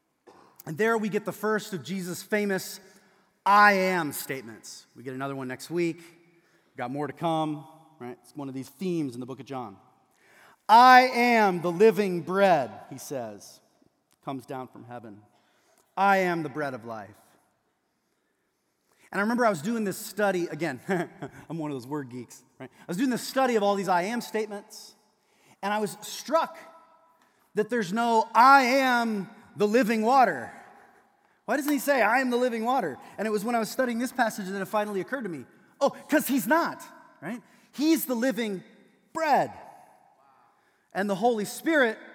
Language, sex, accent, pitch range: English, male, American, 180-265 Hz